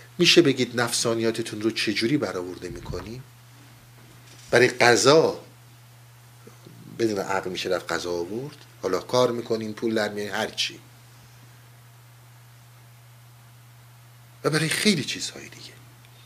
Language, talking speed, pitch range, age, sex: Persian, 95 wpm, 115-125 Hz, 50-69, male